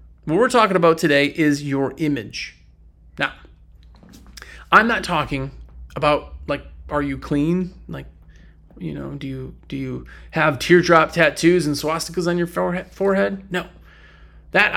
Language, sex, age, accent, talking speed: English, male, 30-49, American, 140 wpm